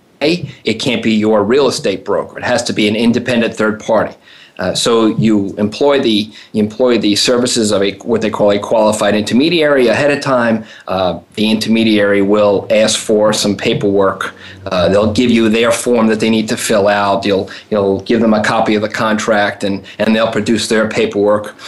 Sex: male